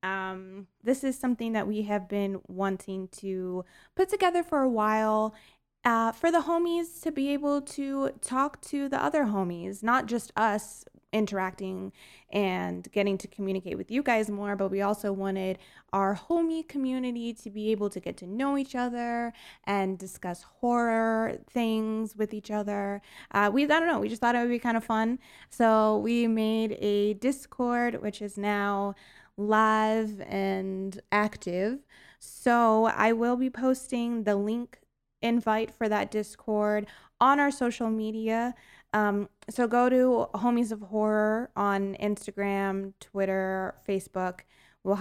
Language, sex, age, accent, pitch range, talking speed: English, female, 20-39, American, 200-250 Hz, 155 wpm